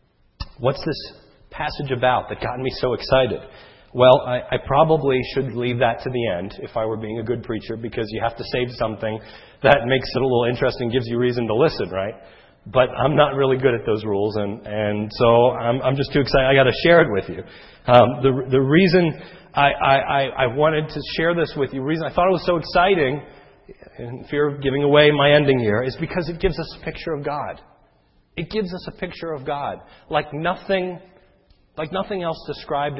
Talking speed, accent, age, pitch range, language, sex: 215 wpm, American, 40-59, 120-150 Hz, English, male